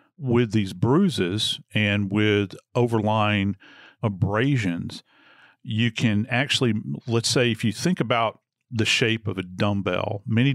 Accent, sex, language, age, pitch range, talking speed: American, male, English, 40-59, 105-125 Hz, 125 wpm